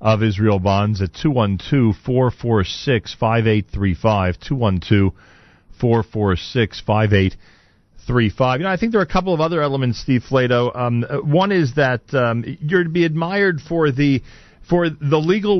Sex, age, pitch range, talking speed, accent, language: male, 40-59, 105-145 Hz, 195 wpm, American, English